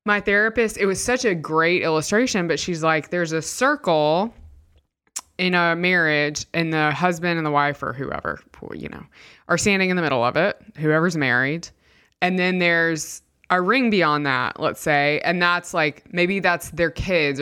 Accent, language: American, English